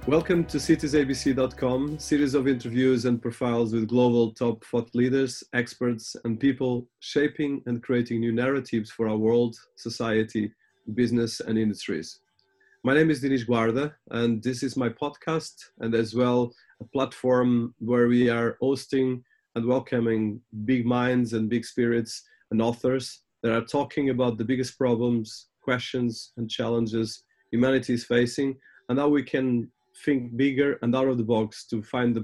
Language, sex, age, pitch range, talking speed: English, male, 30-49, 115-130 Hz, 155 wpm